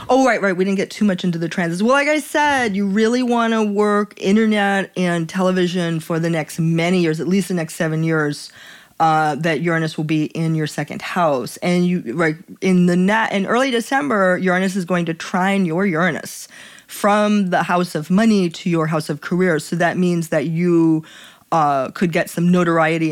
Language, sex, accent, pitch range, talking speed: English, female, American, 165-210 Hz, 210 wpm